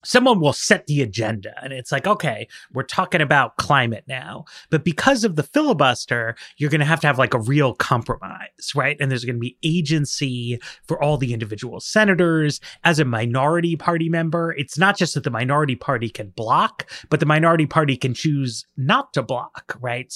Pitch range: 120-170 Hz